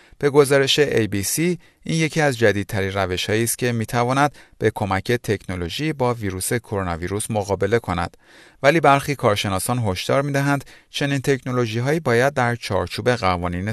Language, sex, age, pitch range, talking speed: Persian, male, 40-59, 95-140 Hz, 140 wpm